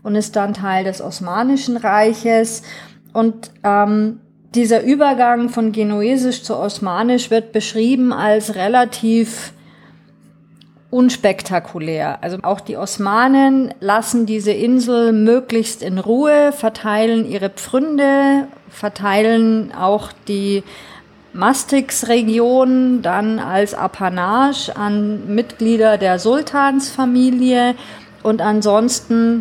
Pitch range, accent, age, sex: 200-235 Hz, German, 40-59, female